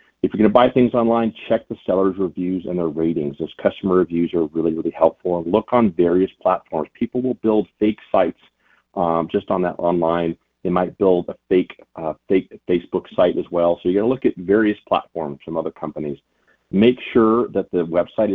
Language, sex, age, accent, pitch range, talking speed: English, male, 40-59, American, 85-110 Hz, 205 wpm